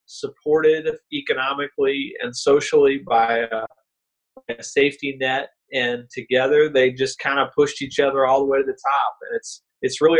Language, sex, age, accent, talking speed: English, male, 40-59, American, 165 wpm